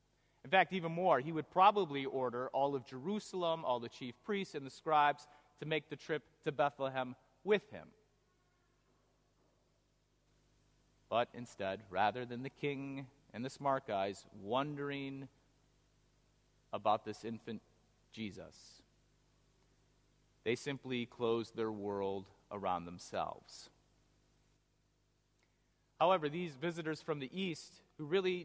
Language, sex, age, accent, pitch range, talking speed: English, male, 30-49, American, 120-155 Hz, 120 wpm